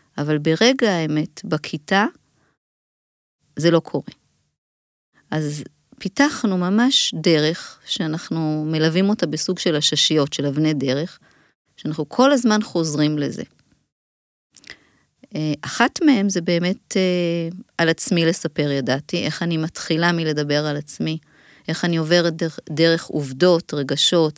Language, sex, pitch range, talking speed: Hebrew, female, 150-195 Hz, 115 wpm